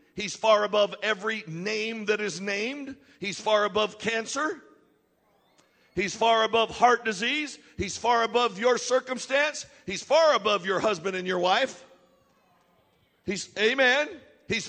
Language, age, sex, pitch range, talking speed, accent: English, 60-79, male, 210-290 Hz, 135 wpm, American